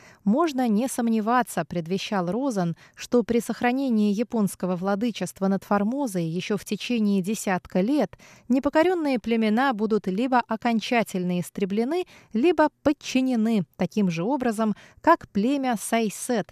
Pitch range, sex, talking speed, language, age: 185-250 Hz, female, 115 wpm, Russian, 20-39